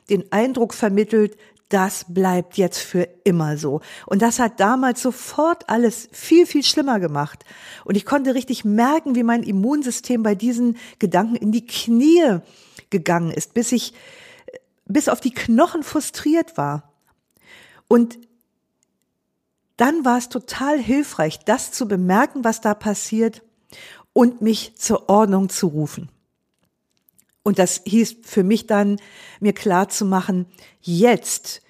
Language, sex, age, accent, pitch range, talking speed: German, female, 50-69, German, 190-245 Hz, 135 wpm